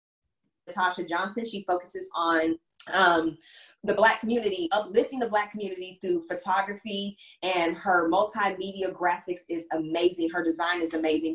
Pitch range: 175-225 Hz